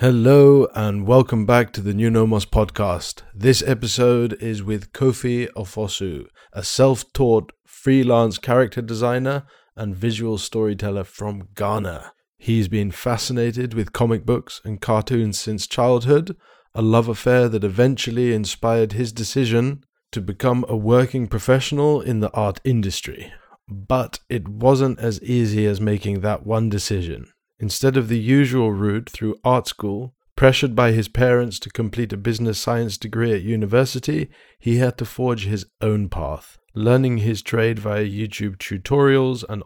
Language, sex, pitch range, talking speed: English, male, 105-125 Hz, 145 wpm